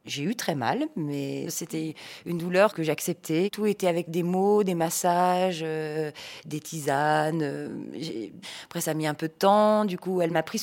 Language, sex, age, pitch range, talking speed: French, female, 30-49, 155-185 Hz, 200 wpm